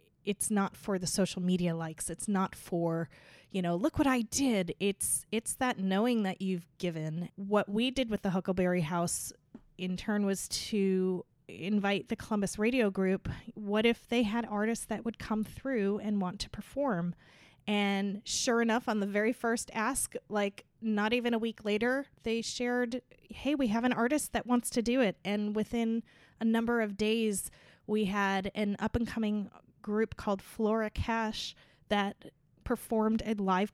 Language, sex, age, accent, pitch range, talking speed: English, female, 20-39, American, 195-230 Hz, 170 wpm